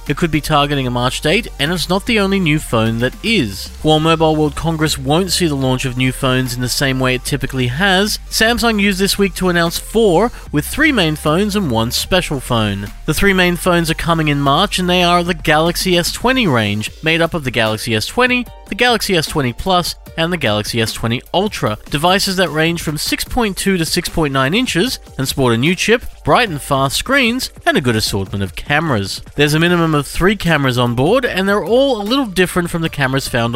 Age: 30-49